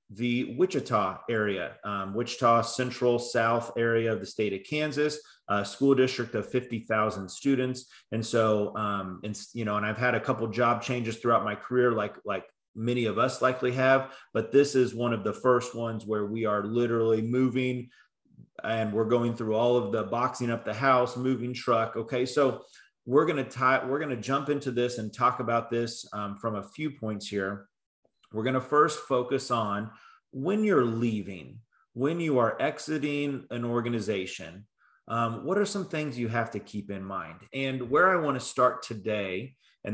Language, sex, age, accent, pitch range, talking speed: English, male, 30-49, American, 110-130 Hz, 185 wpm